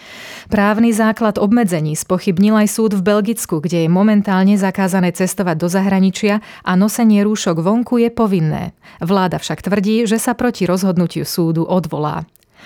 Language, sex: Slovak, female